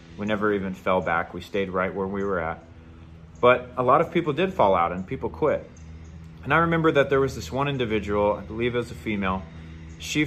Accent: American